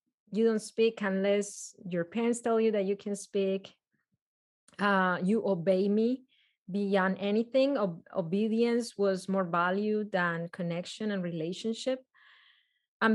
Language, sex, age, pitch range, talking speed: English, female, 30-49, 190-230 Hz, 125 wpm